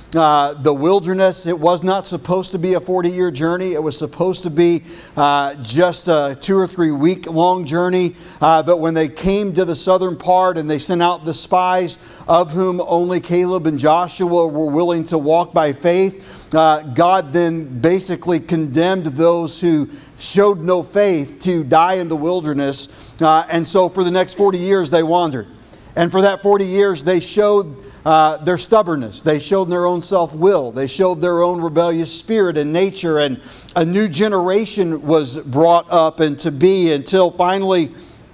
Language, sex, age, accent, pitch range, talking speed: English, male, 40-59, American, 160-185 Hz, 180 wpm